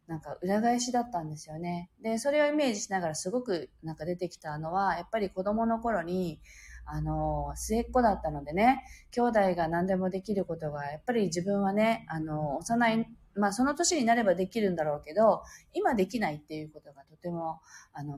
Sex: female